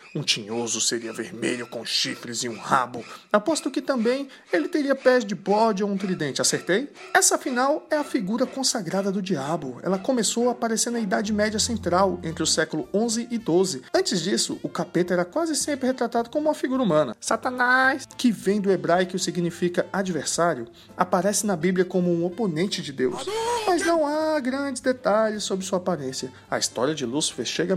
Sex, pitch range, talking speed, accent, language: male, 165-240 Hz, 185 wpm, Brazilian, Portuguese